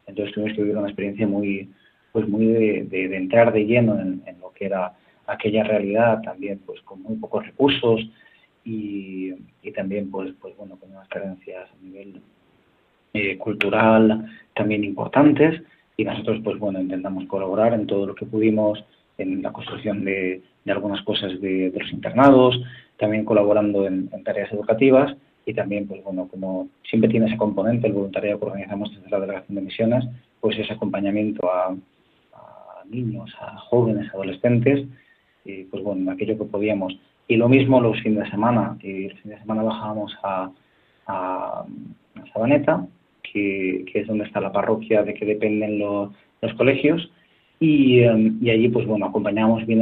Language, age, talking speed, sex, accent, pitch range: Spanish, 30-49, 170 wpm, male, Spanish, 100-115 Hz